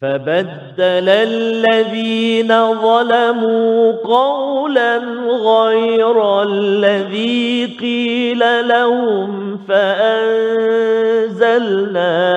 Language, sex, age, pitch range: Malayalam, male, 40-59, 220-280 Hz